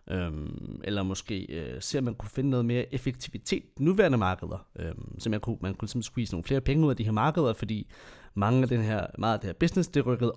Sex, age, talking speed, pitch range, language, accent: male, 30-49, 235 wpm, 105-145 Hz, Danish, native